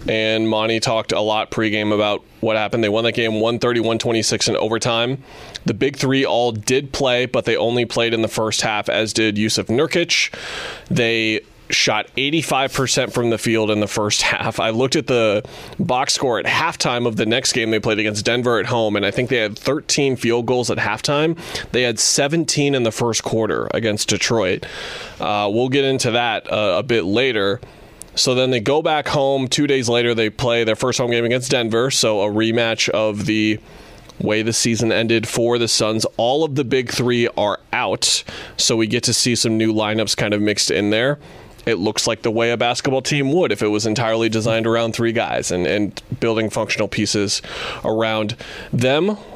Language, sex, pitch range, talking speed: English, male, 110-125 Hz, 200 wpm